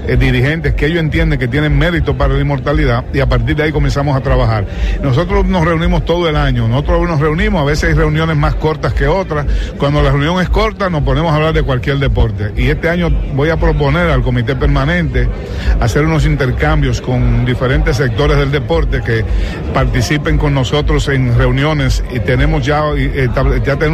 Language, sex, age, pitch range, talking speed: English, male, 50-69, 125-155 Hz, 190 wpm